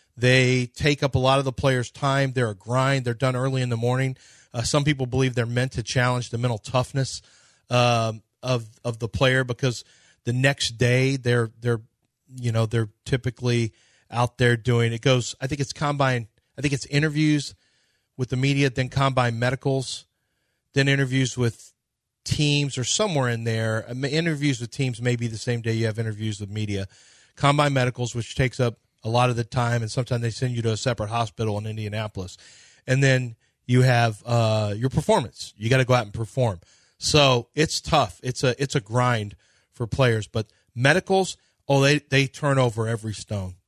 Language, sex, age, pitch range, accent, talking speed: English, male, 30-49, 115-135 Hz, American, 190 wpm